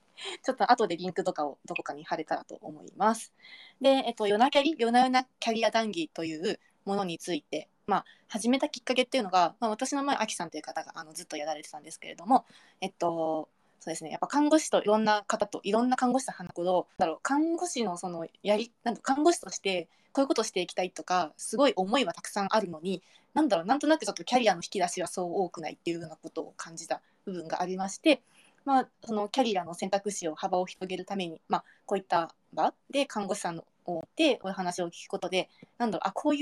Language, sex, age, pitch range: Japanese, female, 20-39, 175-230 Hz